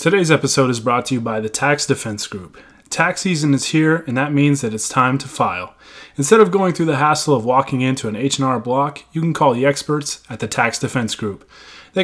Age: 20-39